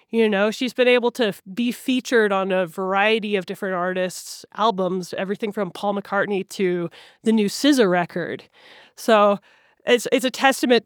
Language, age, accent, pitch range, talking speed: English, 20-39, American, 205-255 Hz, 160 wpm